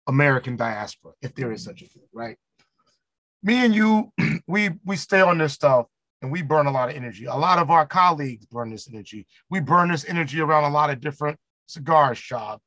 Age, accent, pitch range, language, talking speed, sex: 40-59, American, 150-215 Hz, English, 210 wpm, male